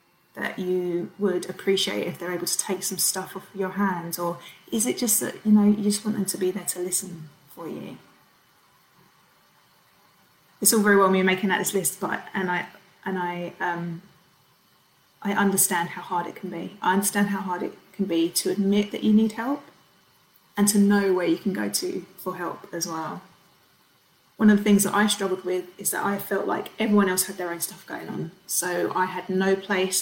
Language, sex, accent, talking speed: English, female, British, 210 wpm